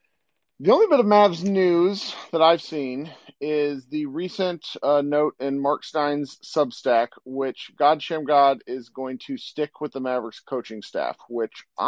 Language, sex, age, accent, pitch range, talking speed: English, male, 40-59, American, 115-185 Hz, 165 wpm